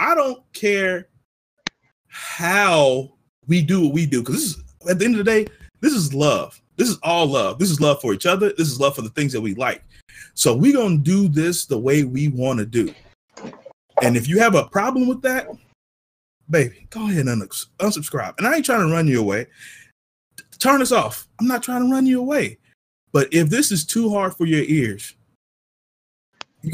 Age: 20-39